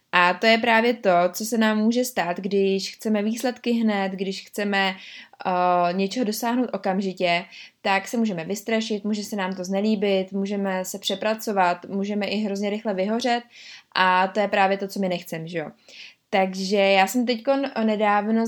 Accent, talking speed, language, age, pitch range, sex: native, 160 wpm, Czech, 20-39, 190-225 Hz, female